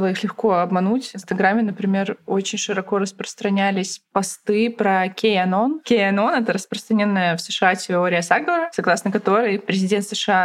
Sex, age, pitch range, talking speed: female, 20-39, 190-230 Hz, 140 wpm